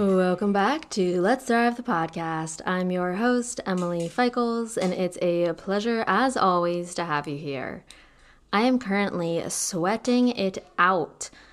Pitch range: 165-210 Hz